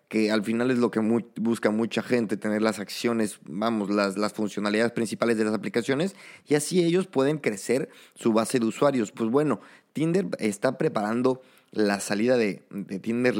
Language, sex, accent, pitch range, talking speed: Spanish, male, Mexican, 105-125 Hz, 180 wpm